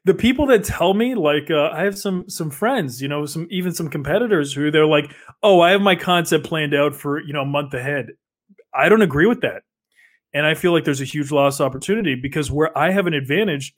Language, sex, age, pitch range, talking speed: English, male, 20-39, 145-190 Hz, 235 wpm